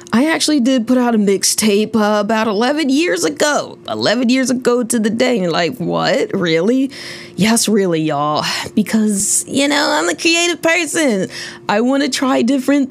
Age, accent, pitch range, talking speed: 20-39, American, 205-280 Hz, 165 wpm